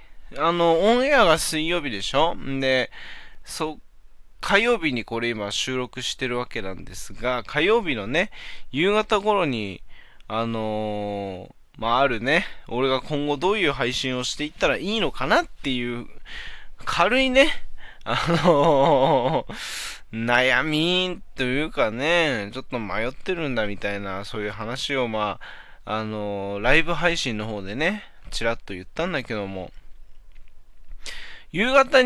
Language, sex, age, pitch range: Japanese, male, 20-39, 110-180 Hz